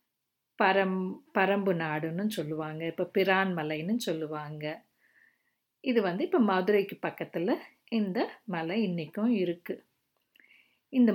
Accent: native